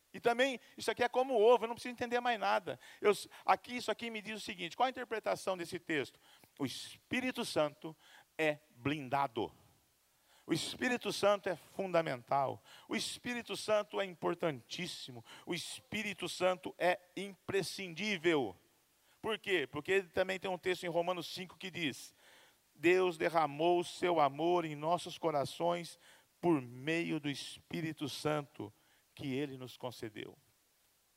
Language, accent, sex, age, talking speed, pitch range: Portuguese, Brazilian, male, 50-69, 145 wpm, 155-220 Hz